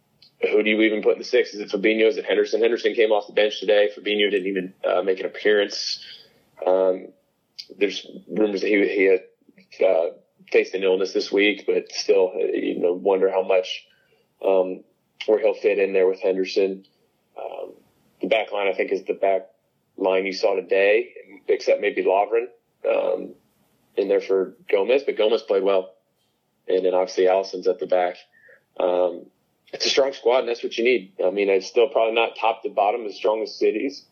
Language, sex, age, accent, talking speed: English, male, 30-49, American, 195 wpm